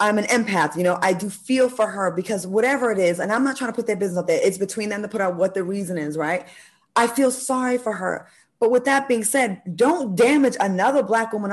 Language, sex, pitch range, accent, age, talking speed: English, female, 195-265 Hz, American, 20-39, 260 wpm